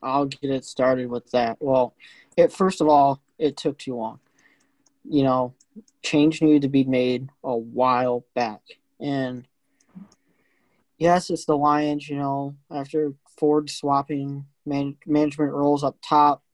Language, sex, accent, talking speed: English, male, American, 140 wpm